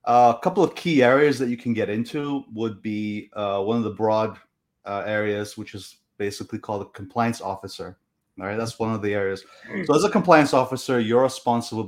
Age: 30-49